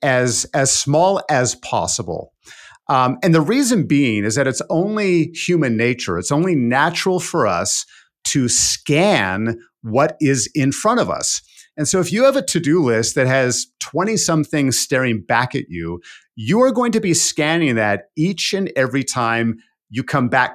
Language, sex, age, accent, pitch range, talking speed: English, male, 50-69, American, 125-165 Hz, 170 wpm